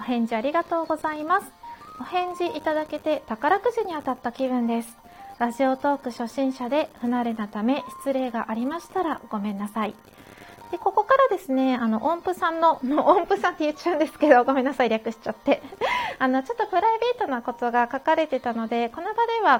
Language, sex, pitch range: Japanese, female, 240-330 Hz